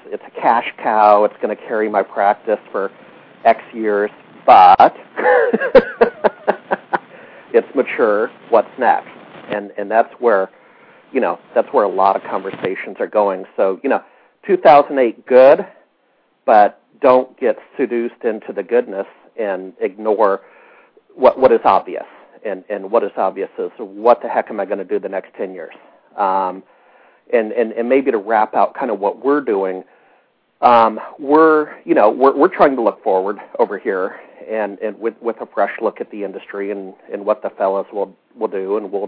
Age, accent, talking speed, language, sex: 50-69, American, 175 wpm, English, male